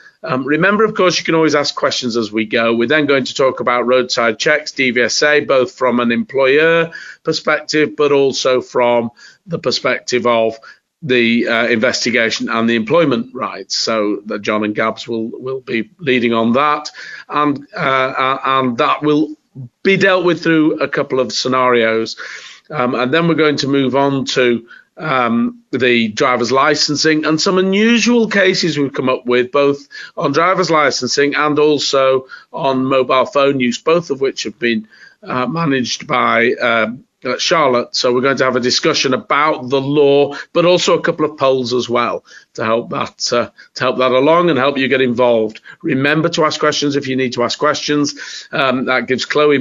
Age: 40-59